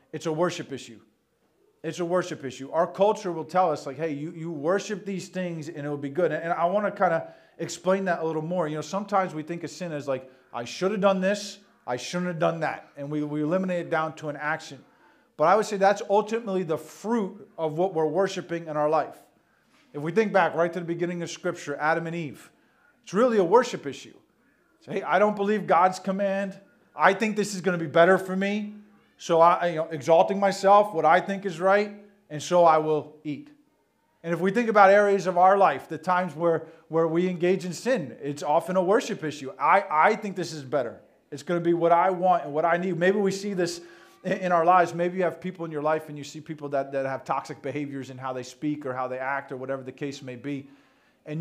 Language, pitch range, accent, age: English, 150-190 Hz, American, 40-59